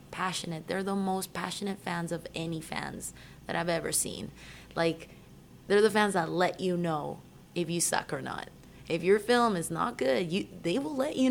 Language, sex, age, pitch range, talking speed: English, female, 20-39, 165-205 Hz, 190 wpm